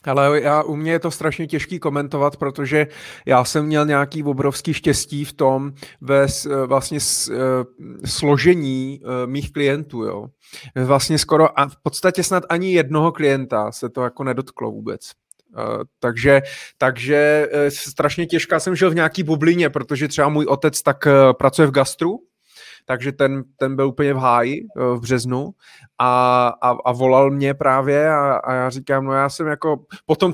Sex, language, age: male, Czech, 20-39